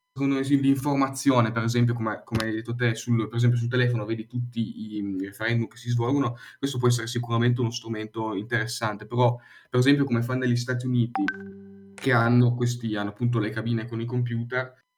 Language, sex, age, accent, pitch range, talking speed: Italian, male, 10-29, native, 115-130 Hz, 185 wpm